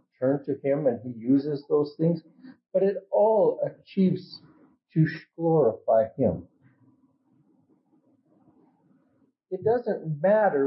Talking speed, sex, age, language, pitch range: 100 wpm, male, 50-69, English, 145-195 Hz